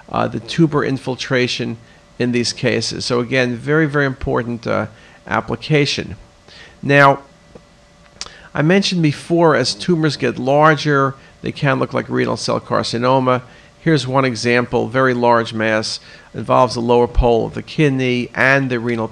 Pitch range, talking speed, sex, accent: 120-155 Hz, 140 wpm, male, American